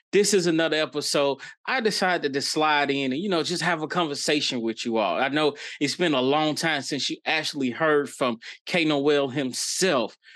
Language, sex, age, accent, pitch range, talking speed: English, male, 30-49, American, 130-175 Hz, 195 wpm